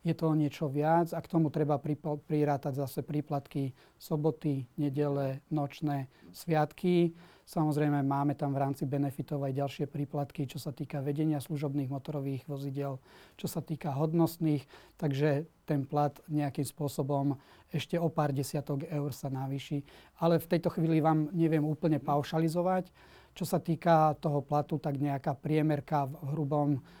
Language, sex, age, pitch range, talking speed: Slovak, male, 30-49, 145-160 Hz, 145 wpm